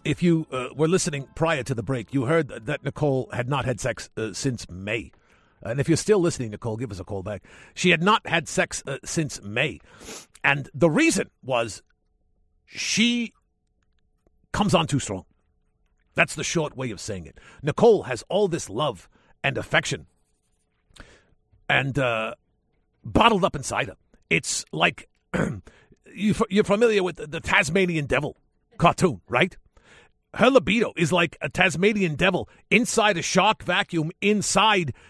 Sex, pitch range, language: male, 130-205 Hz, English